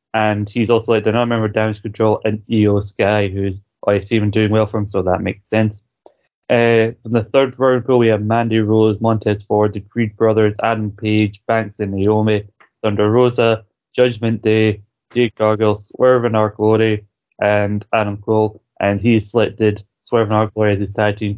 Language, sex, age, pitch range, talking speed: English, male, 20-39, 105-115 Hz, 180 wpm